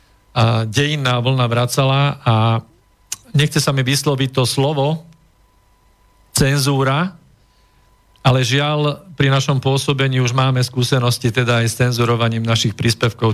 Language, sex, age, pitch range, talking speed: Slovak, male, 40-59, 115-140 Hz, 115 wpm